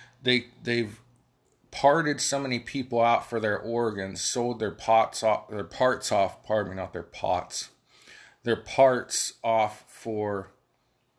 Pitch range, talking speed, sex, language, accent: 105-120 Hz, 140 wpm, male, English, American